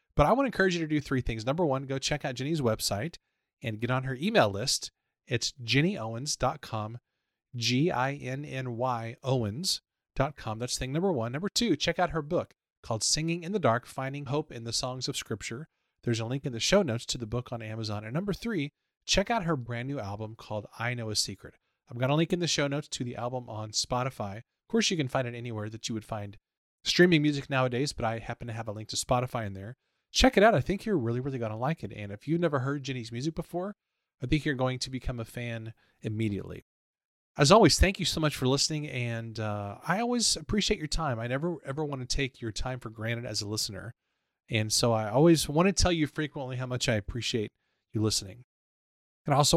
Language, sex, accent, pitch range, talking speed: English, male, American, 115-150 Hz, 230 wpm